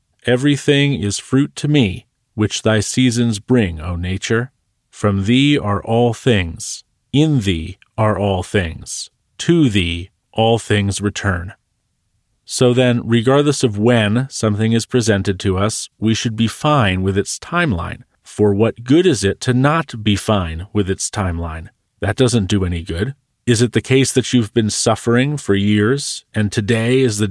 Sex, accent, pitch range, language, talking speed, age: male, American, 105-125 Hz, English, 165 wpm, 40-59